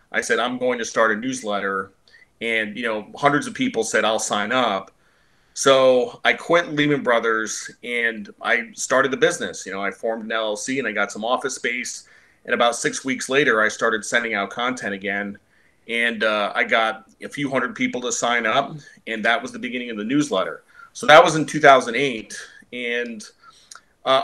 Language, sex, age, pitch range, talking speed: English, male, 30-49, 110-135 Hz, 190 wpm